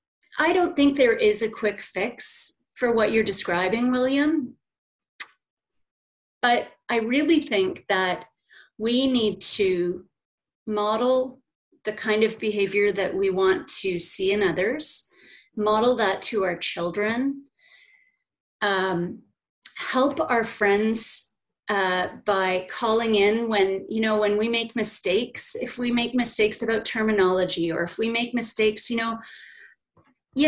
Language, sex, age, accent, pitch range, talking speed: English, female, 30-49, American, 200-255 Hz, 130 wpm